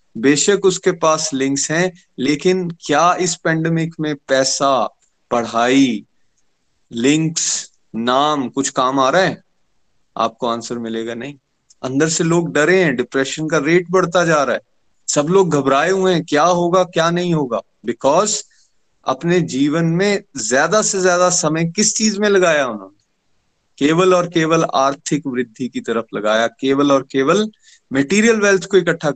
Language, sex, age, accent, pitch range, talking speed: Hindi, male, 30-49, native, 125-170 Hz, 150 wpm